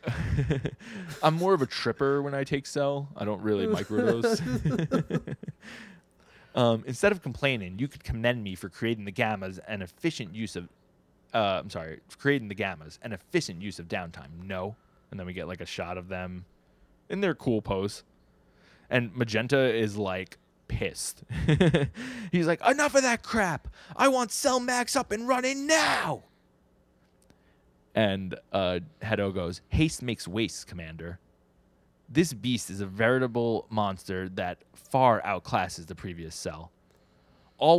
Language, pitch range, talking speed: English, 90-140 Hz, 150 wpm